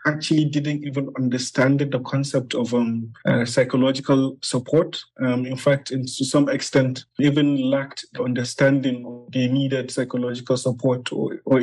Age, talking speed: 30-49, 140 wpm